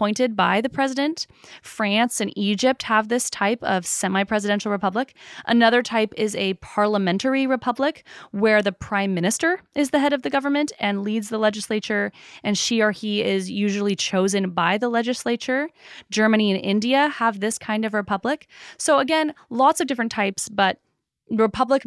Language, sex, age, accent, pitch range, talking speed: English, female, 20-39, American, 195-245 Hz, 160 wpm